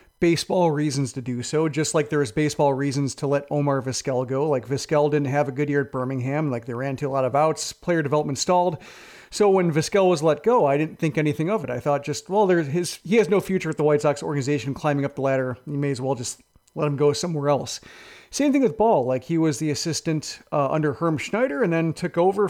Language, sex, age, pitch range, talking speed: English, male, 40-59, 140-175 Hz, 250 wpm